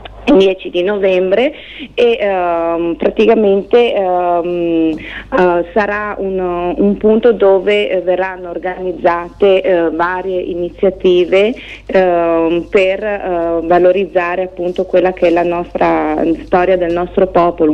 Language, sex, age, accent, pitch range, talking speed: Italian, female, 30-49, native, 170-195 Hz, 115 wpm